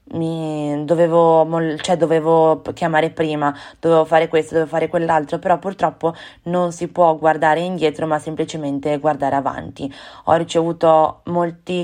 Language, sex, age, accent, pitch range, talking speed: Italian, female, 20-39, native, 150-170 Hz, 130 wpm